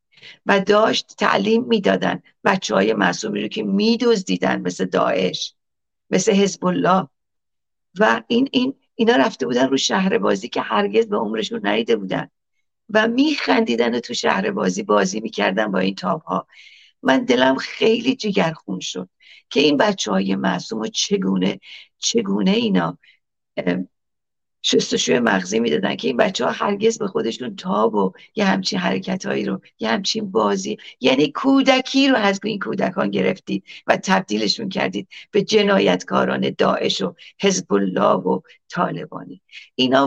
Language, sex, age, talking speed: Persian, female, 50-69, 145 wpm